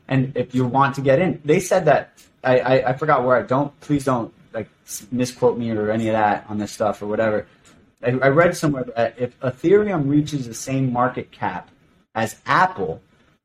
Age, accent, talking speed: 30-49, American, 200 wpm